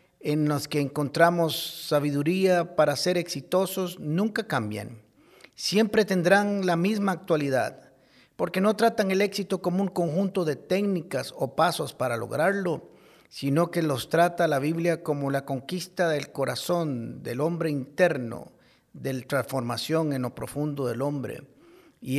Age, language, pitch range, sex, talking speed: 50-69, Spanish, 140-180 Hz, male, 140 wpm